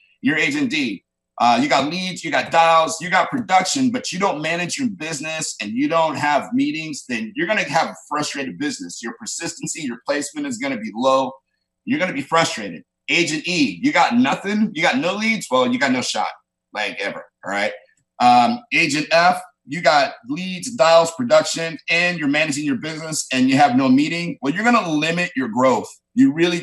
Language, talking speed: English, 195 wpm